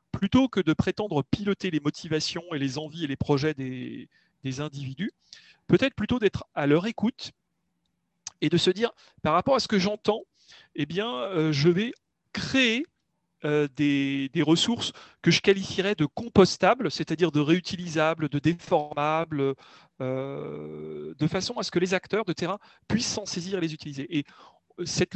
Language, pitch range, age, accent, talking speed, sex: French, 145-195 Hz, 40-59, French, 165 wpm, male